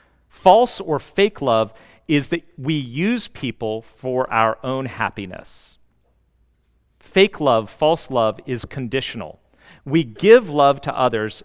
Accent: American